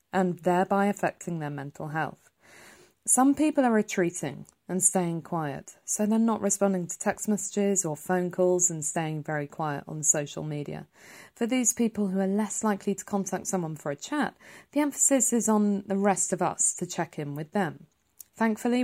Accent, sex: British, female